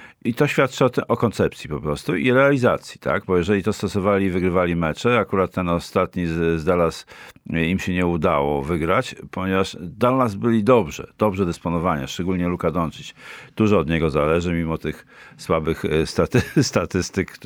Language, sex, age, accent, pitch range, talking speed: Polish, male, 50-69, native, 90-120 Hz, 165 wpm